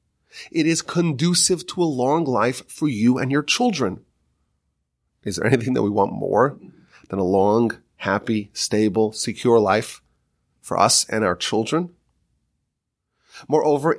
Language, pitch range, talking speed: English, 115-165 Hz, 135 wpm